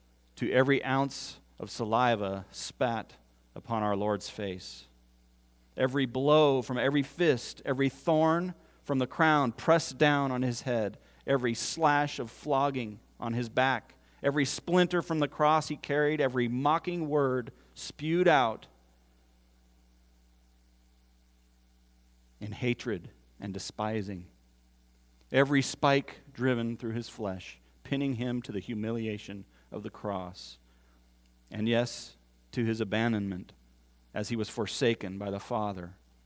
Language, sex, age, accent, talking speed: English, male, 40-59, American, 120 wpm